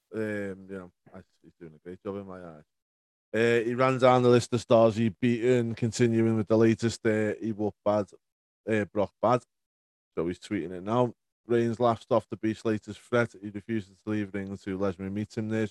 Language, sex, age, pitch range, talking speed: English, male, 20-39, 95-115 Hz, 220 wpm